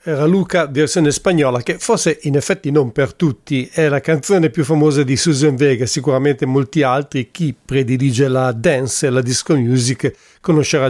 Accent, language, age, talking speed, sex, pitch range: Italian, English, 50-69, 170 wpm, male, 140-160 Hz